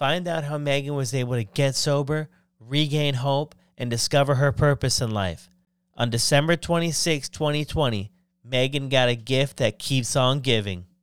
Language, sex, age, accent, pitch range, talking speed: English, male, 30-49, American, 120-150 Hz, 160 wpm